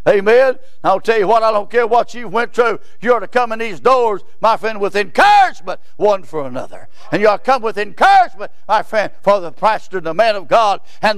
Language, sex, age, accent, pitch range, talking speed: English, male, 60-79, American, 200-315 Hz, 225 wpm